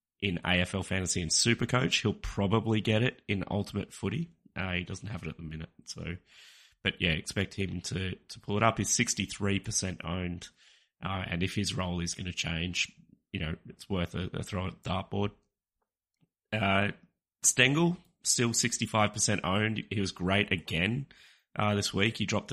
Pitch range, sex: 90-105 Hz, male